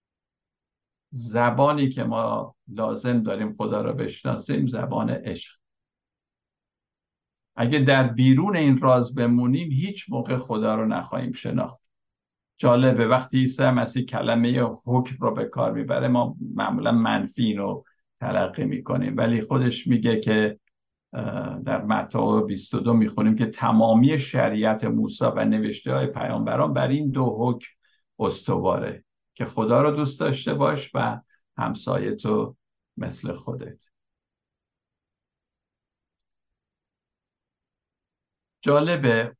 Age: 60-79